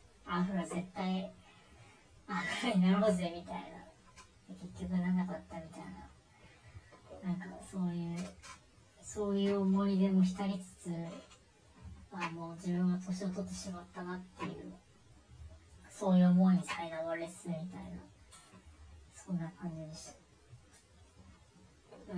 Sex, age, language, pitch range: male, 30-49, Japanese, 155-200 Hz